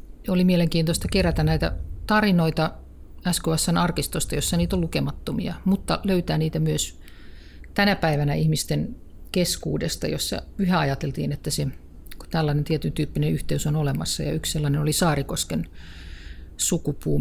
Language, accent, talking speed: Finnish, native, 120 wpm